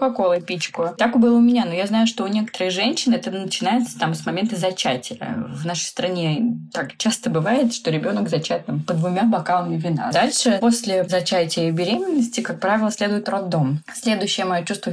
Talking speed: 175 wpm